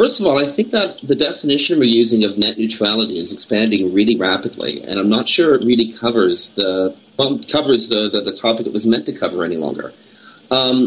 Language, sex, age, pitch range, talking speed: English, male, 40-59, 95-115 Hz, 215 wpm